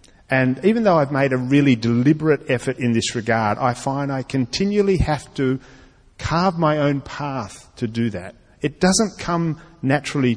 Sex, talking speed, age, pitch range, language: male, 170 wpm, 40-59, 110-145 Hz, English